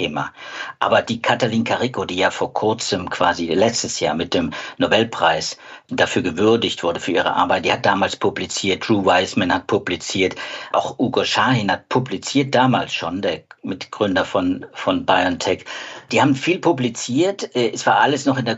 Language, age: German, 50-69